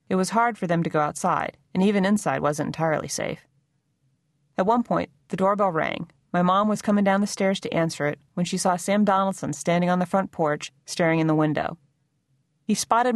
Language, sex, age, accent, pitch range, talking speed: English, female, 30-49, American, 145-200 Hz, 210 wpm